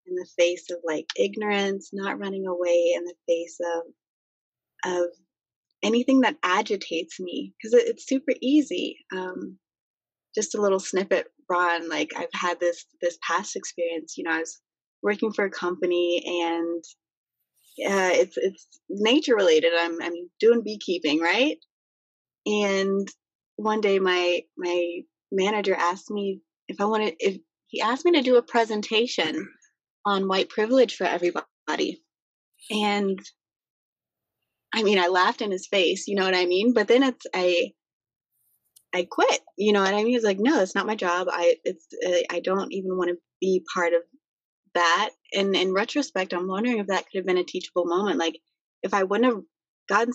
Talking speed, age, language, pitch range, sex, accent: 170 wpm, 20-39, English, 175-215 Hz, female, American